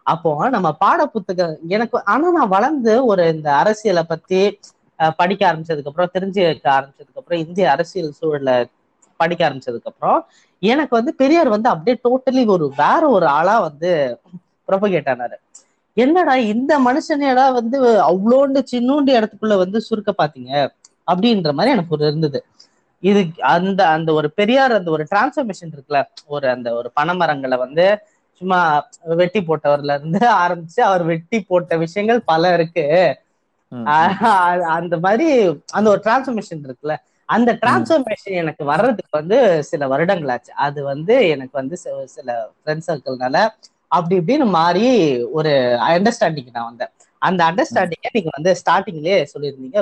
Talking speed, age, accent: 115 wpm, 20-39, native